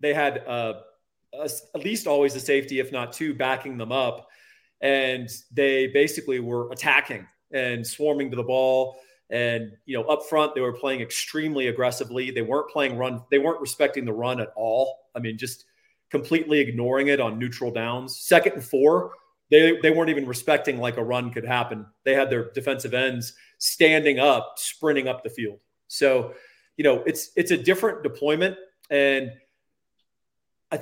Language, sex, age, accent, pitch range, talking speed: English, male, 40-59, American, 125-155 Hz, 175 wpm